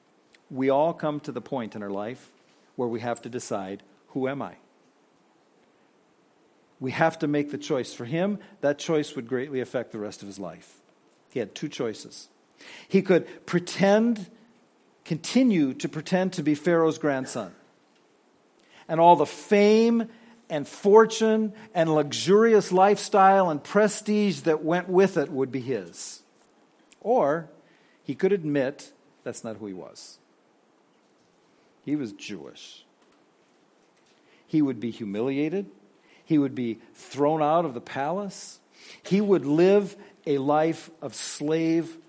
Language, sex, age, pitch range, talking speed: English, male, 50-69, 135-190 Hz, 140 wpm